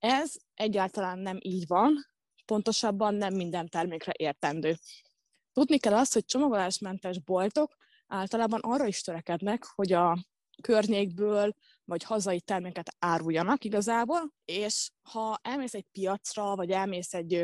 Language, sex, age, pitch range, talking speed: Hungarian, female, 20-39, 185-230 Hz, 125 wpm